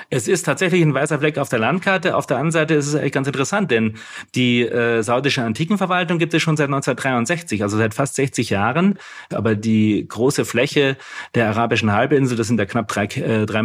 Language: German